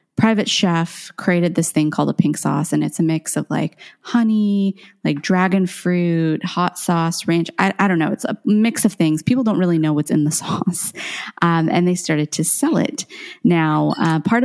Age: 30-49